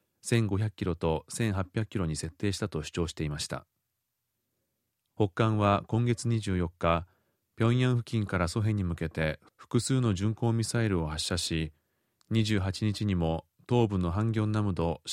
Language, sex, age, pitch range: Japanese, male, 30-49, 90-115 Hz